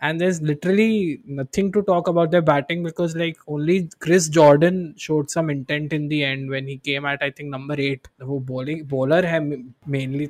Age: 20-39